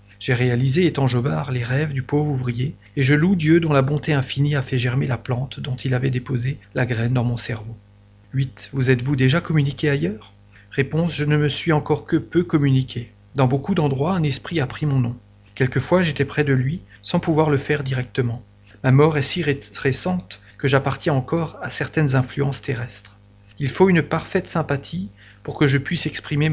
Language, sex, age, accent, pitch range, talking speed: French, male, 40-59, French, 120-155 Hz, 195 wpm